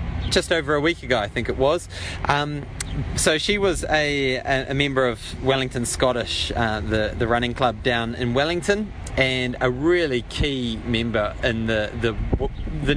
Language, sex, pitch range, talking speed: English, male, 105-130 Hz, 170 wpm